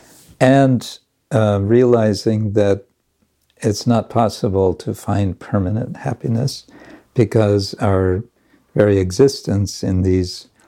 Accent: American